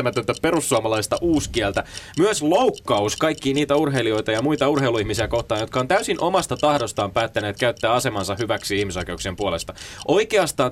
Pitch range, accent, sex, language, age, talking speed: 110-155 Hz, native, male, Finnish, 20-39, 130 wpm